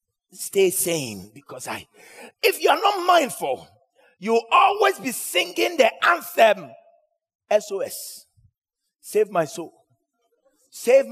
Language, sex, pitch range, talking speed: English, male, 185-270 Hz, 105 wpm